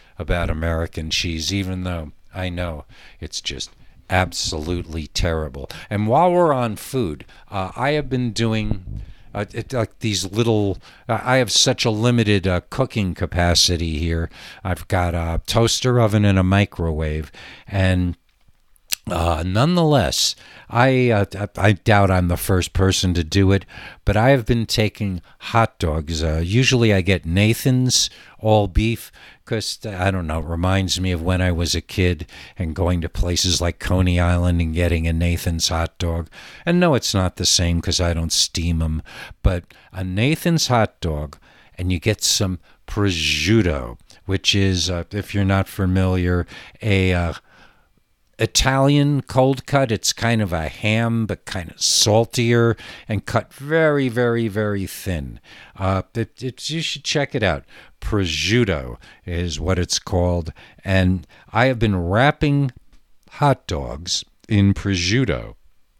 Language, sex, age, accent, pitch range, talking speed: English, male, 60-79, American, 85-110 Hz, 150 wpm